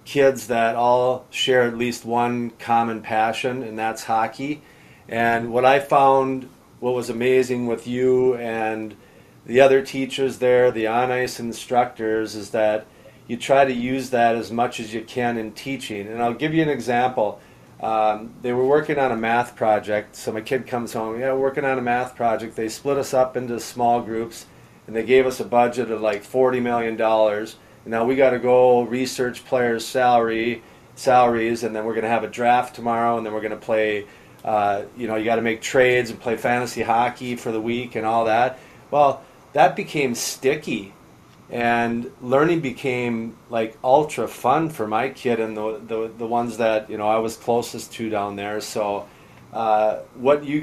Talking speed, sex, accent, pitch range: 190 wpm, male, American, 110-125 Hz